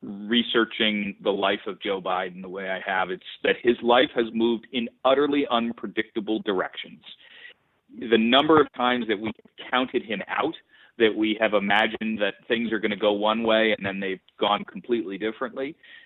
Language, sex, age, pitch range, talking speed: English, male, 40-59, 105-135 Hz, 175 wpm